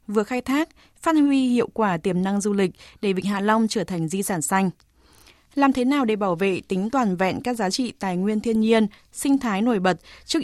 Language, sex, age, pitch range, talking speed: Vietnamese, female, 20-39, 175-225 Hz, 235 wpm